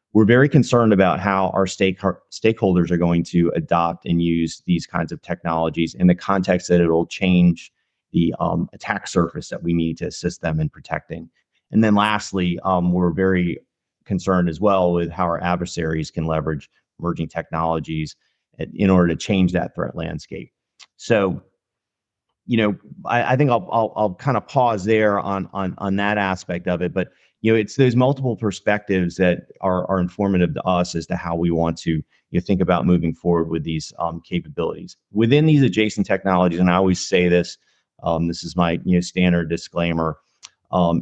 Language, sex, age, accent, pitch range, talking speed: English, male, 30-49, American, 85-100 Hz, 185 wpm